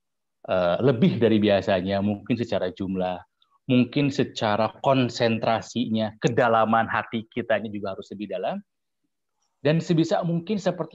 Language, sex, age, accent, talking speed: Indonesian, male, 30-49, native, 110 wpm